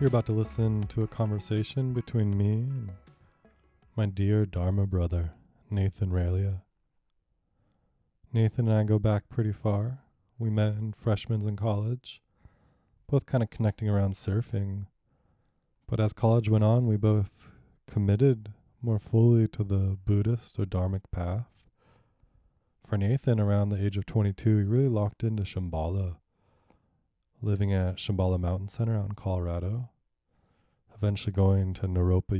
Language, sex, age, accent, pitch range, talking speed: English, male, 20-39, American, 95-110 Hz, 140 wpm